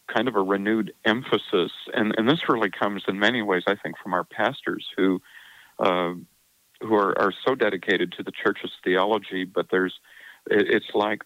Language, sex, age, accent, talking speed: English, male, 50-69, American, 175 wpm